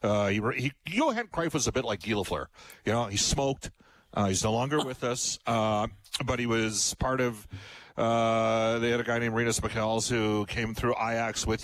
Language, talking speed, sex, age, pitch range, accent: English, 200 wpm, male, 40-59, 95-120 Hz, American